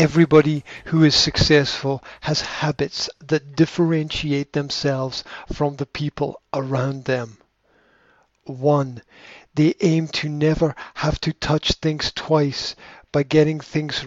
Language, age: English, 50-69